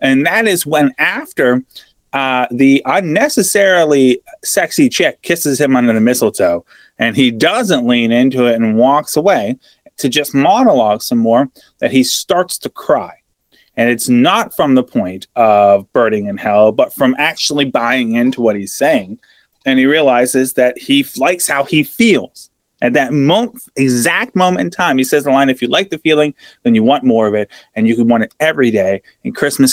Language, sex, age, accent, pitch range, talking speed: English, male, 30-49, American, 125-185 Hz, 185 wpm